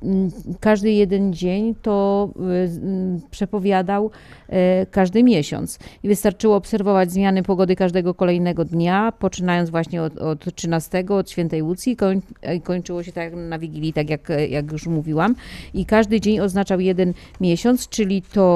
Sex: female